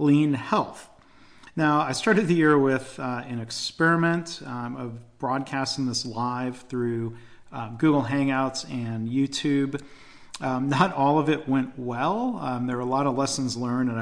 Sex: male